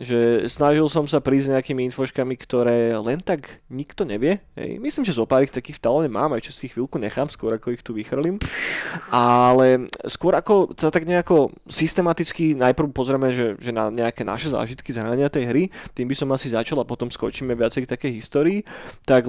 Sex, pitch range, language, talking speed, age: male, 125-155 Hz, Slovak, 185 wpm, 20-39